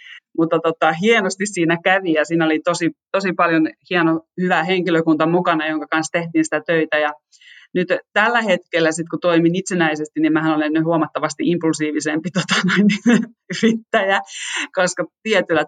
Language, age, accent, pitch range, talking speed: Finnish, 30-49, native, 150-185 Hz, 140 wpm